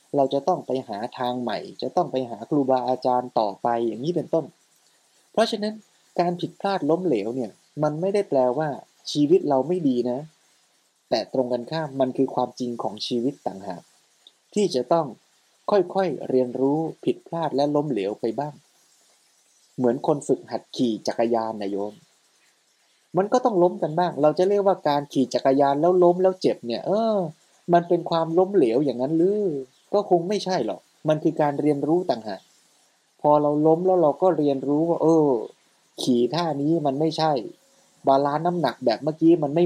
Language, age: Thai, 20-39